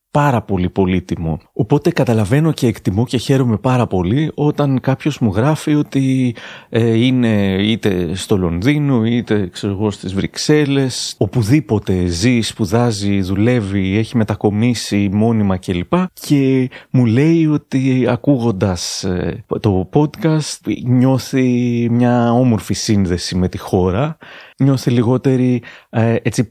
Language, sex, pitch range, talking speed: Greek, male, 100-135 Hz, 115 wpm